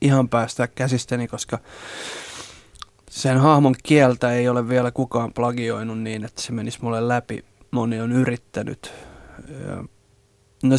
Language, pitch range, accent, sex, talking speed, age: Finnish, 120-130 Hz, native, male, 130 wpm, 20-39